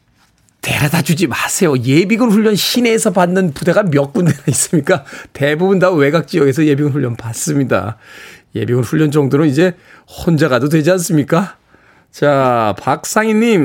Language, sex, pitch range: Korean, male, 140-185 Hz